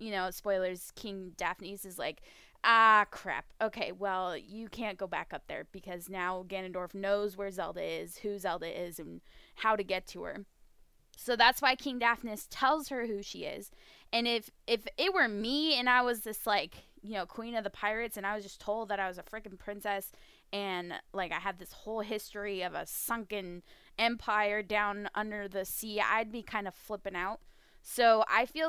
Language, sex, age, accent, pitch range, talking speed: English, female, 10-29, American, 190-230 Hz, 200 wpm